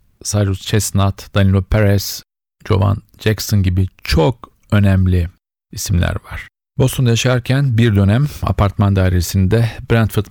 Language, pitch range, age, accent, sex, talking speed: Turkish, 95-110 Hz, 50-69, native, male, 105 wpm